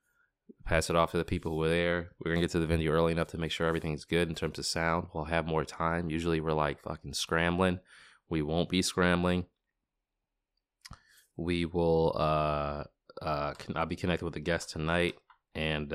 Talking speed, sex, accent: 190 wpm, male, American